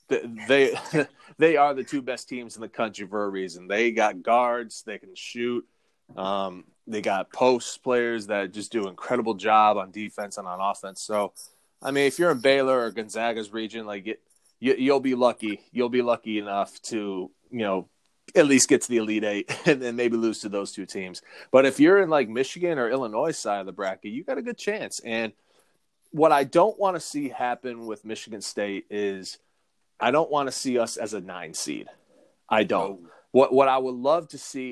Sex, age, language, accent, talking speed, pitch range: male, 20-39, English, American, 210 wpm, 110-145 Hz